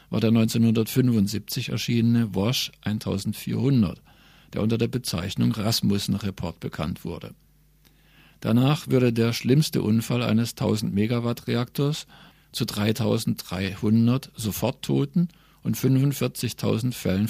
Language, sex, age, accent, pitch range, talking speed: German, male, 50-69, German, 105-130 Hz, 90 wpm